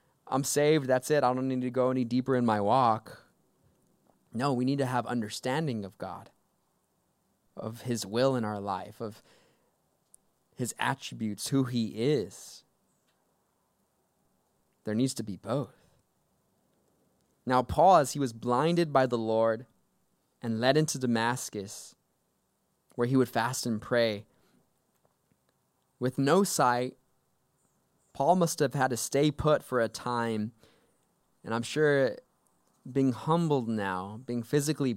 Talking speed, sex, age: 135 wpm, male, 20-39